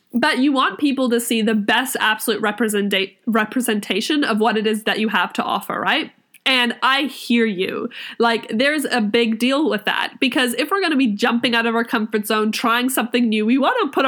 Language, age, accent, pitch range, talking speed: English, 20-39, American, 220-260 Hz, 215 wpm